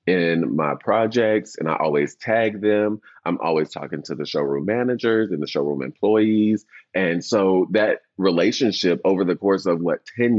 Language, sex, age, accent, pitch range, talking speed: English, male, 30-49, American, 80-115 Hz, 165 wpm